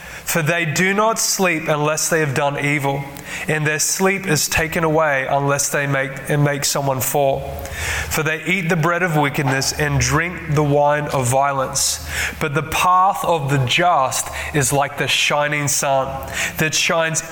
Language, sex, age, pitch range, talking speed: English, male, 20-39, 140-170 Hz, 170 wpm